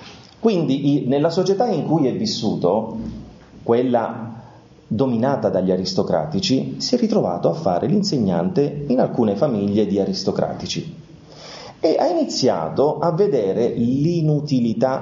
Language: Italian